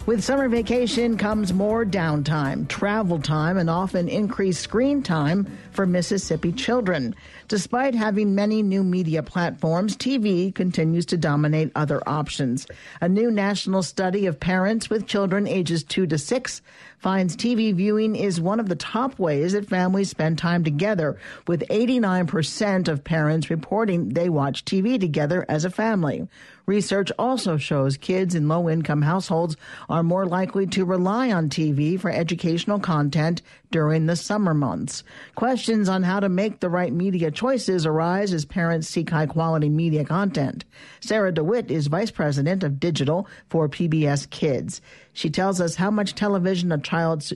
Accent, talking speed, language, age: American, 155 wpm, English, 50-69